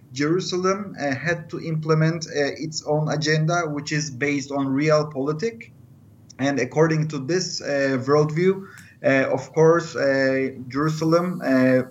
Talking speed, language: 130 wpm, English